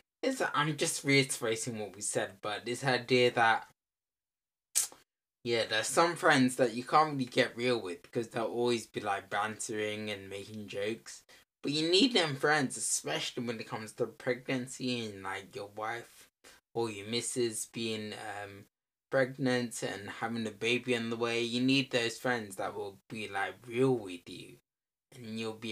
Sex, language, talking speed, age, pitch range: male, English, 170 wpm, 10-29, 110-135 Hz